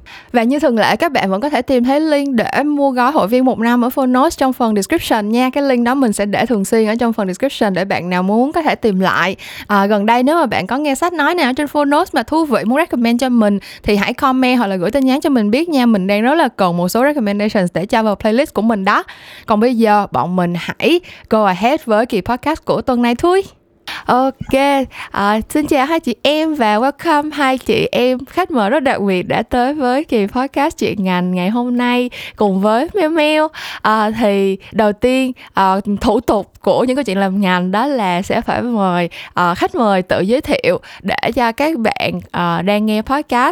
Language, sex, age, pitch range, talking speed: Vietnamese, female, 10-29, 205-275 Hz, 235 wpm